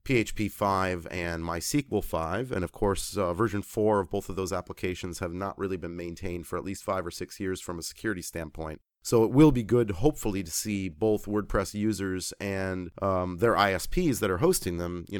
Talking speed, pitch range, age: 205 wpm, 95-115 Hz, 30-49